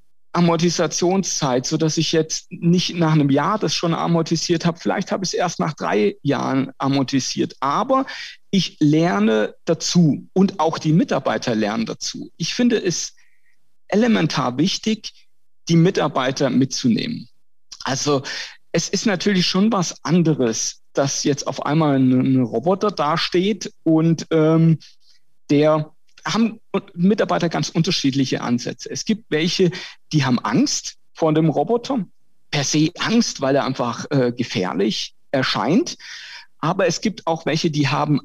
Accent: German